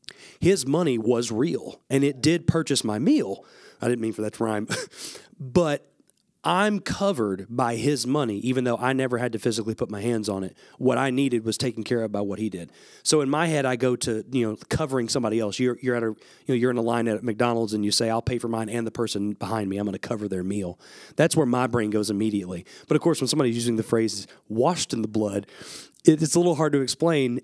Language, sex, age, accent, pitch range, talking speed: English, male, 30-49, American, 110-140 Hz, 245 wpm